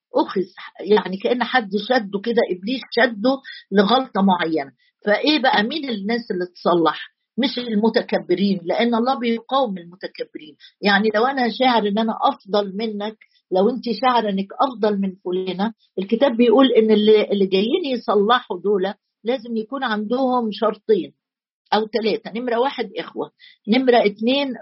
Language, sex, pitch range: Arabic, female, 195-240 Hz